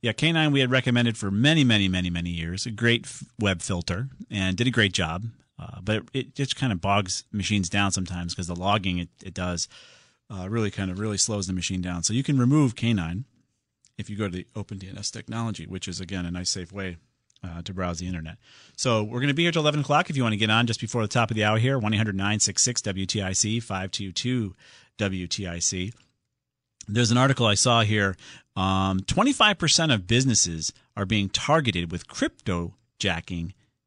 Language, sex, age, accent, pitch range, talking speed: English, male, 40-59, American, 95-125 Hz, 200 wpm